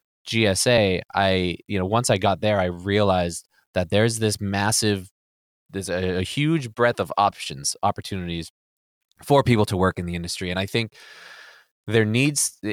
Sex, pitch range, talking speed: male, 90-110 Hz, 160 wpm